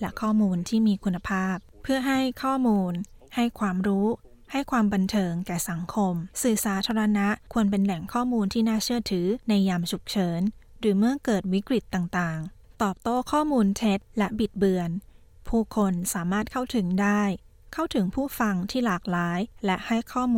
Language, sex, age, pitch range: Thai, female, 20-39, 190-225 Hz